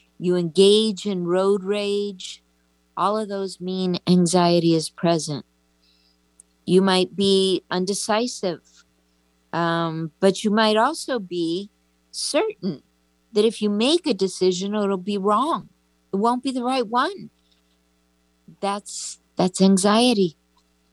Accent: American